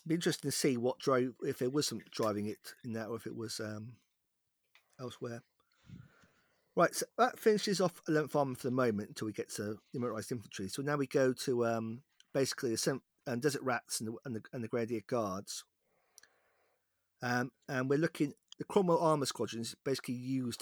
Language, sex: English, male